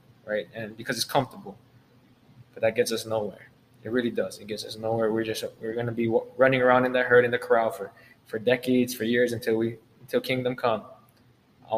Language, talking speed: English, 215 wpm